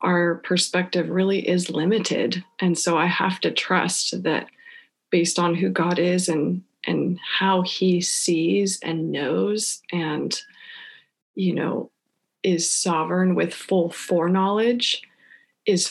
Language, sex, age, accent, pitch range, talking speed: English, female, 20-39, American, 170-195 Hz, 125 wpm